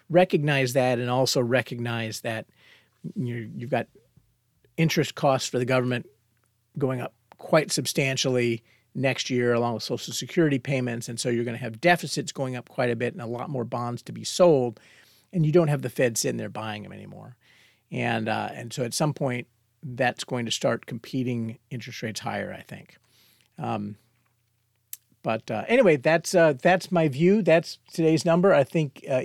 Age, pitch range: 50-69, 120-160 Hz